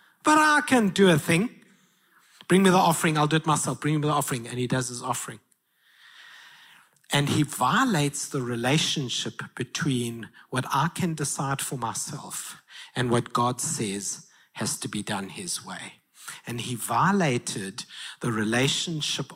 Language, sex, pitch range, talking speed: English, male, 120-160 Hz, 155 wpm